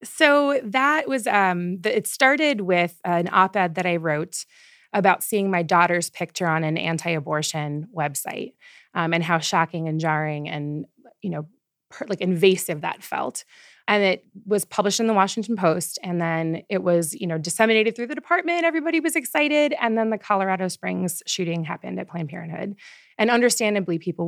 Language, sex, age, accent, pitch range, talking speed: English, female, 20-39, American, 165-220 Hz, 170 wpm